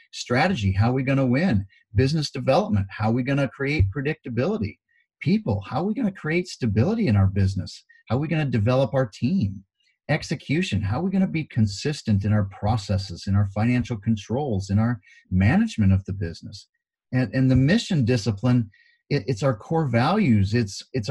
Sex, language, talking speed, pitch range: male, English, 195 wpm, 105-140 Hz